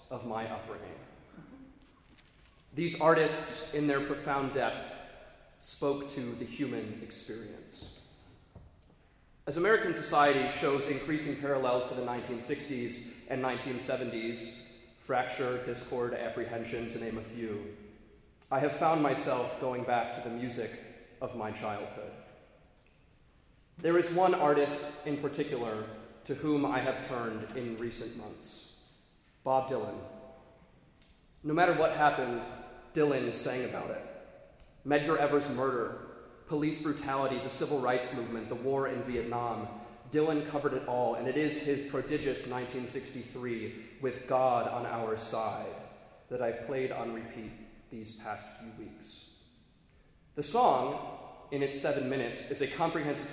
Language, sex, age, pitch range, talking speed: English, male, 30-49, 115-140 Hz, 130 wpm